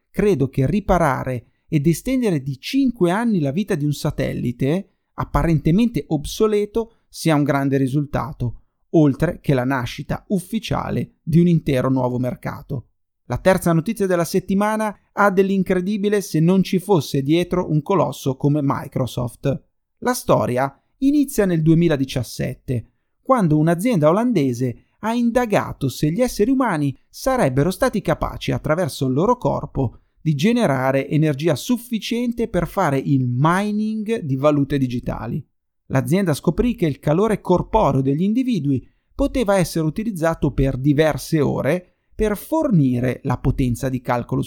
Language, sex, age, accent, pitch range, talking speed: Italian, male, 30-49, native, 135-205 Hz, 130 wpm